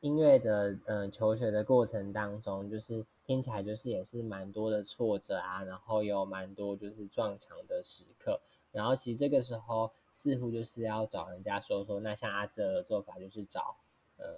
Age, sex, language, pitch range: 10-29, male, Chinese, 100-125 Hz